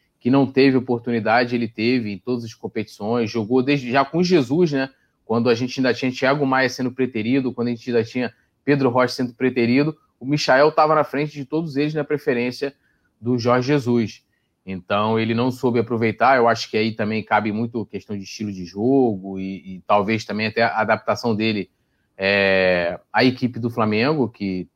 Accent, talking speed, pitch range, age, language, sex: Brazilian, 190 wpm, 105-135 Hz, 20-39, Portuguese, male